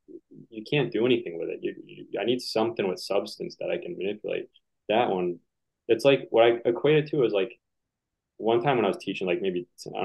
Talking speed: 220 wpm